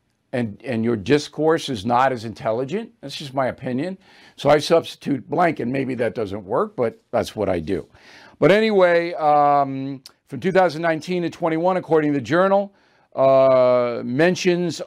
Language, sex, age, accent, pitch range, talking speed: English, male, 50-69, American, 140-175 Hz, 155 wpm